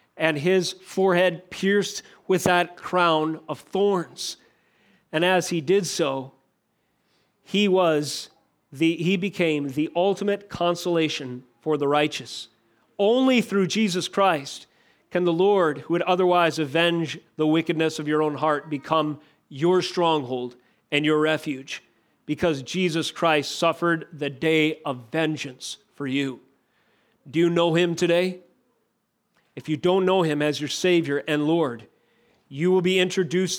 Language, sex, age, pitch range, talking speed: English, male, 40-59, 150-180 Hz, 135 wpm